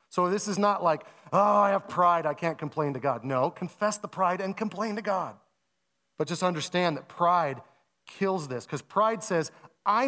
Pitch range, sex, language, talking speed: 125-175 Hz, male, English, 195 wpm